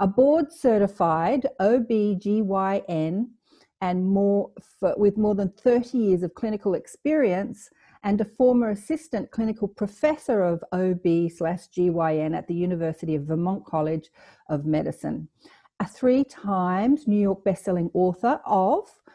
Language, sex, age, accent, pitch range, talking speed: English, female, 50-69, Australian, 175-225 Hz, 105 wpm